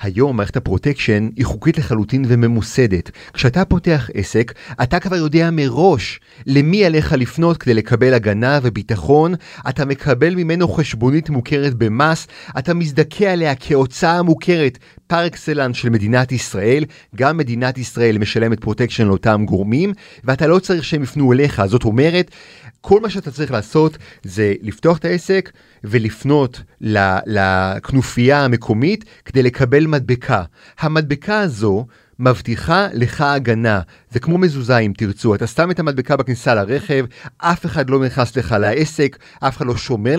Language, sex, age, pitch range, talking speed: Hebrew, male, 30-49, 115-155 Hz, 140 wpm